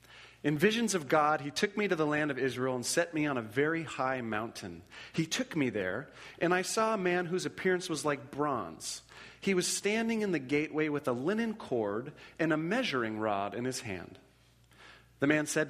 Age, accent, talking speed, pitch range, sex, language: 40-59, American, 205 wpm, 125-175 Hz, male, English